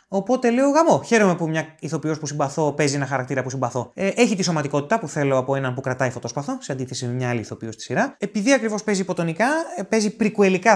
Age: 20-39